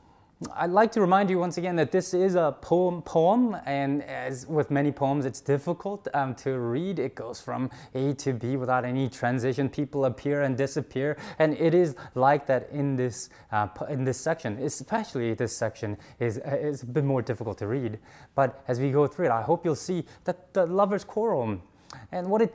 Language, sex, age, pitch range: English, male, 20-39, 125-180 Hz